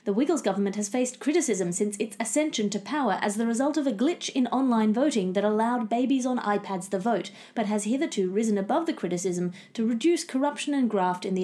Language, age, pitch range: English, 30-49, 195-265 Hz